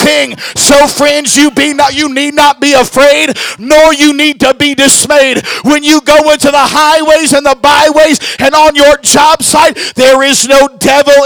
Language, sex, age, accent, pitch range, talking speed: English, male, 50-69, American, 205-285 Hz, 170 wpm